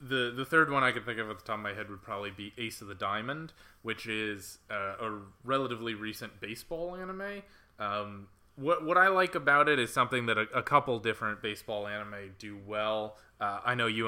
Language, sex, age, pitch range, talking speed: English, male, 20-39, 100-125 Hz, 215 wpm